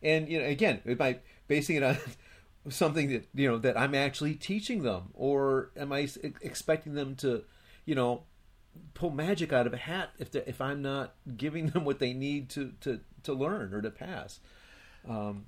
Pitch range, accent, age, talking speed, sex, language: 115-150 Hz, American, 40-59, 185 wpm, male, English